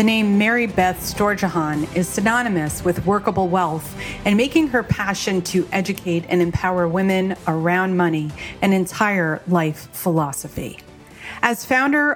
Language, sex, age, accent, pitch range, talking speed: English, female, 30-49, American, 170-215 Hz, 135 wpm